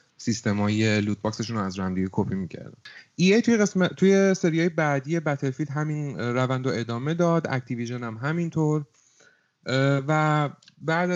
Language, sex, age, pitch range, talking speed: Persian, male, 30-49, 115-150 Hz, 135 wpm